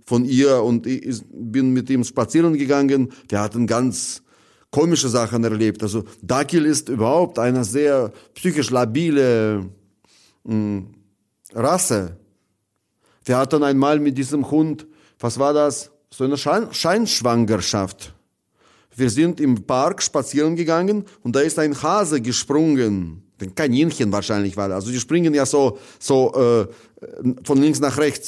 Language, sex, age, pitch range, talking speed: German, male, 30-49, 110-155 Hz, 135 wpm